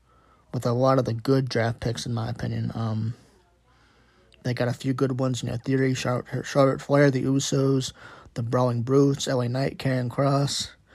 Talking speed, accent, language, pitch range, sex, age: 180 wpm, American, English, 120-135 Hz, male, 20-39